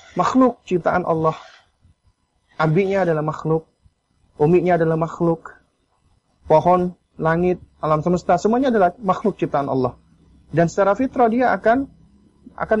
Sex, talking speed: male, 115 wpm